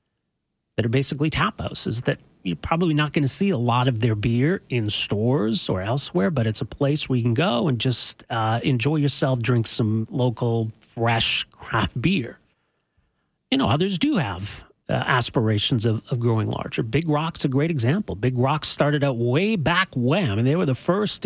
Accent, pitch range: American, 115-145 Hz